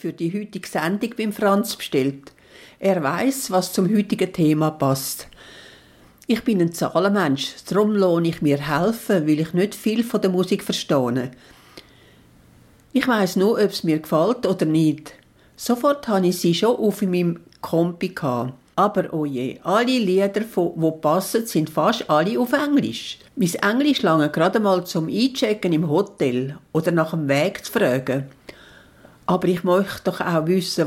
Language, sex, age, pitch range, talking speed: English, female, 60-79, 155-215 Hz, 160 wpm